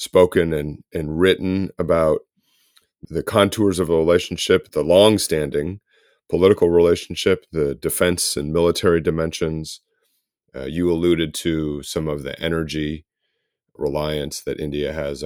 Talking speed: 120 wpm